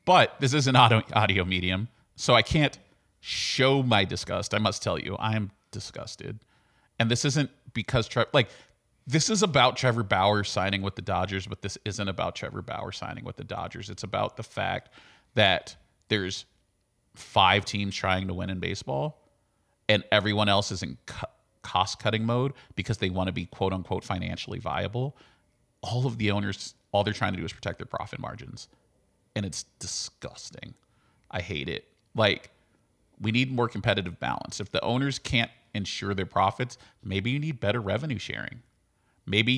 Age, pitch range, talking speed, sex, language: 30-49, 100-120 Hz, 170 wpm, male, English